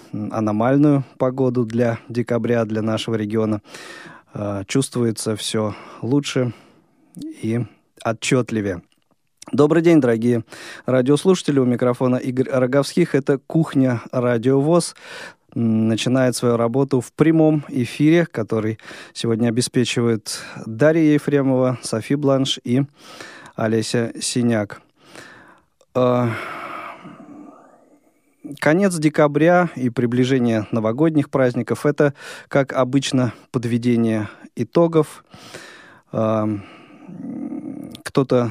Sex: male